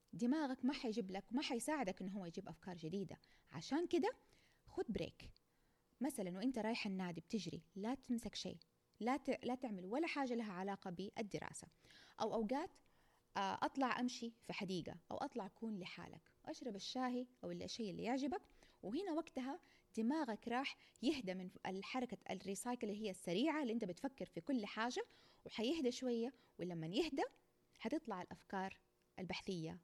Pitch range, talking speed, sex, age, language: 195-280 Hz, 145 wpm, female, 20-39, Arabic